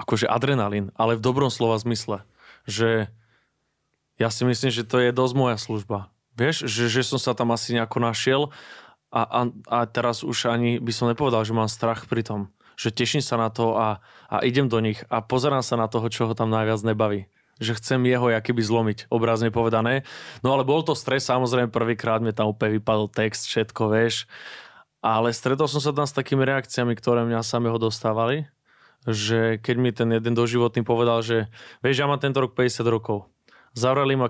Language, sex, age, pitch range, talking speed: Slovak, male, 20-39, 110-125 Hz, 190 wpm